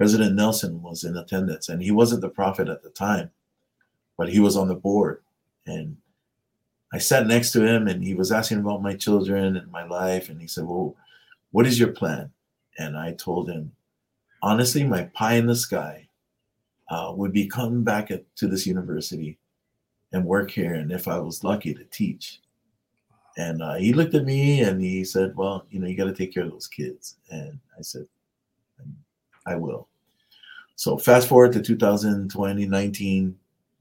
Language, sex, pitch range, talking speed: English, male, 90-105 Hz, 180 wpm